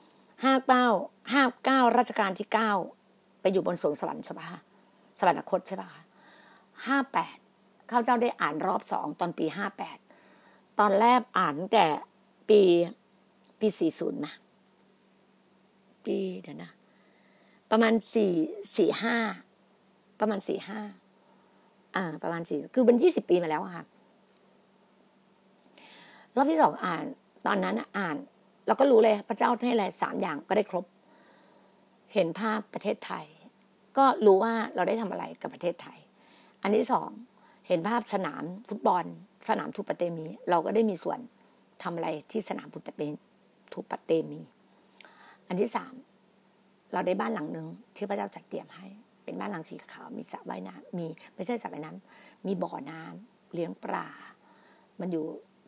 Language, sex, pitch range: Thai, female, 190-230 Hz